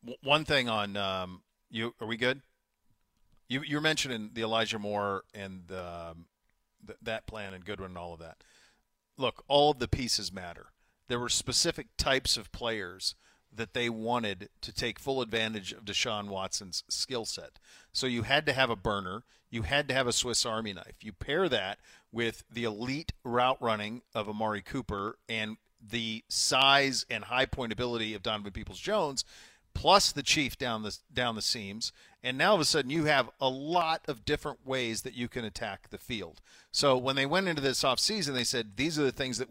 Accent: American